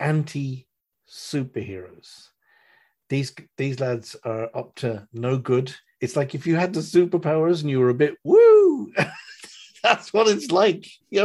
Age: 40-59